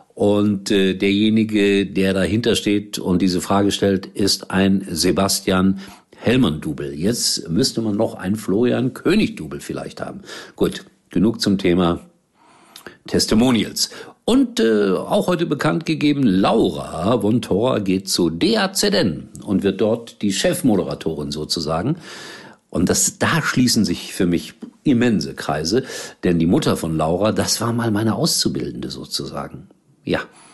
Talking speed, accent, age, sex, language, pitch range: 130 wpm, German, 50-69, male, German, 90-110 Hz